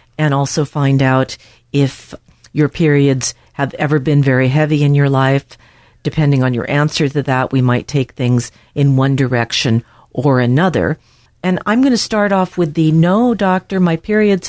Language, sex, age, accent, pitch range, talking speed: English, female, 50-69, American, 135-170 Hz, 175 wpm